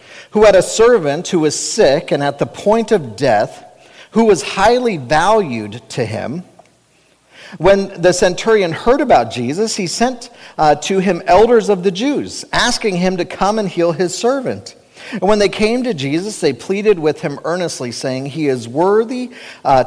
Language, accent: English, American